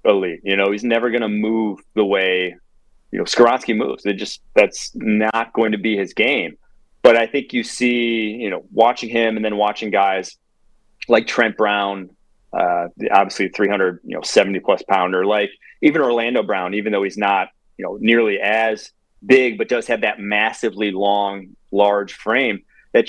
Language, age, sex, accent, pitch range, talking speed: English, 30-49, male, American, 105-130 Hz, 180 wpm